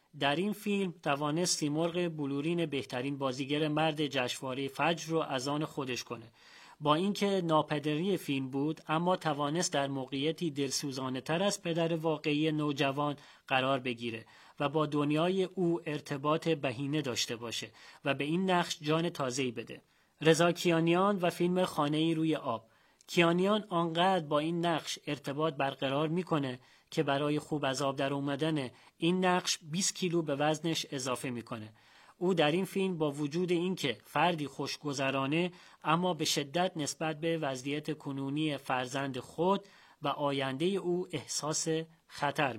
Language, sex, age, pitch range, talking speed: Persian, male, 40-59, 140-170 Hz, 140 wpm